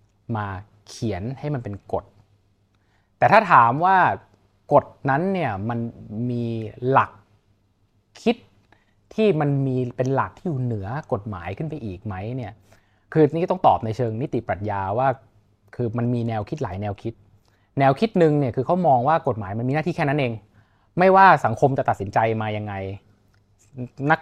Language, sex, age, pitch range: Thai, male, 20-39, 100-135 Hz